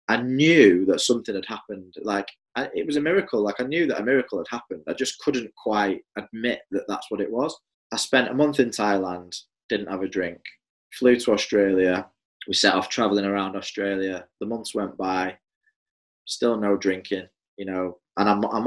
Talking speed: 195 wpm